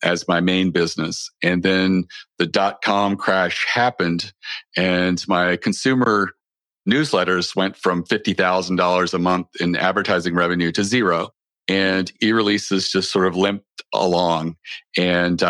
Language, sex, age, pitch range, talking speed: English, male, 40-59, 85-95 Hz, 130 wpm